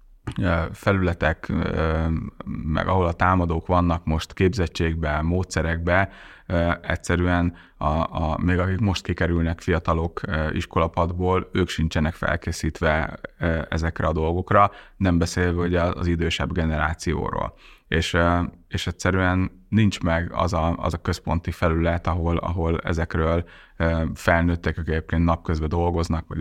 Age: 30-49